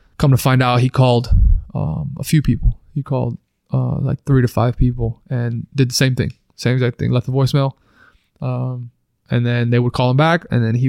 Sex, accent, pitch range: male, American, 120-130 Hz